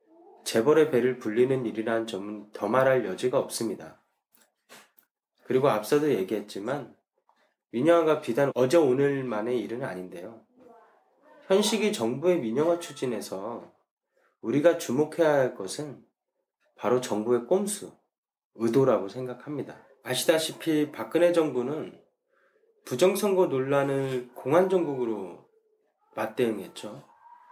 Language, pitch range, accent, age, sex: Korean, 125-195 Hz, native, 20-39, male